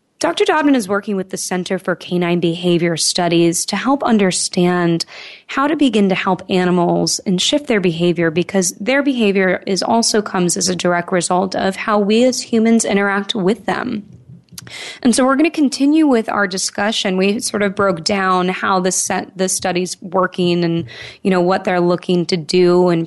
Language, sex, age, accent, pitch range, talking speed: English, female, 20-39, American, 180-225 Hz, 185 wpm